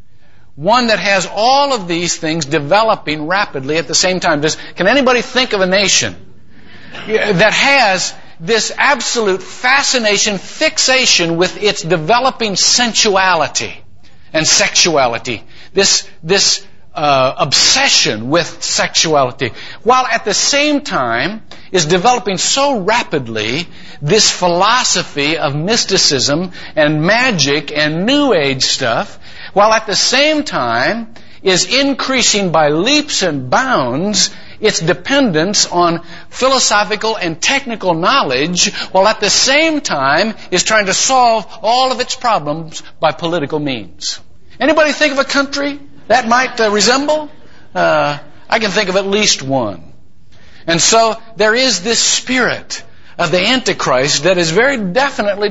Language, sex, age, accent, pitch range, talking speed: English, male, 60-79, American, 170-245 Hz, 130 wpm